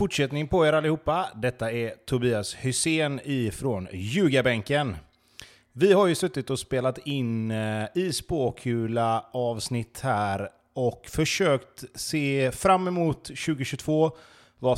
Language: Swedish